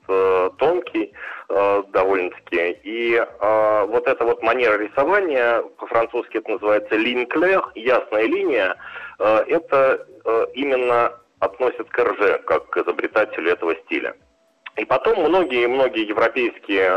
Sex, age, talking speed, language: male, 30-49, 115 wpm, Russian